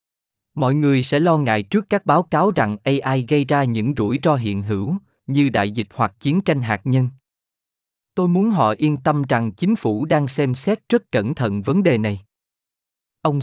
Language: Vietnamese